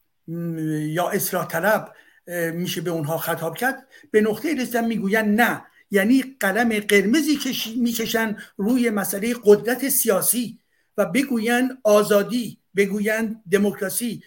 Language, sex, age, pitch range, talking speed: Persian, male, 60-79, 200-255 Hz, 115 wpm